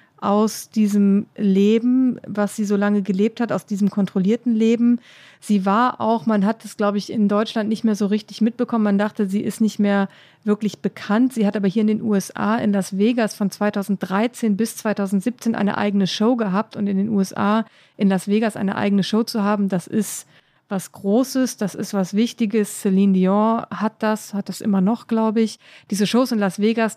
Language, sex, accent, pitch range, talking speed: German, female, German, 200-225 Hz, 200 wpm